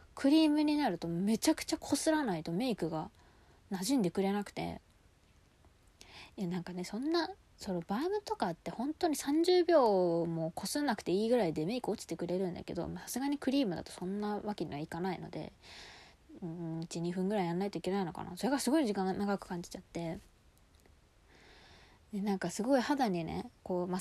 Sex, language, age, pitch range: female, Japanese, 20-39, 175-235 Hz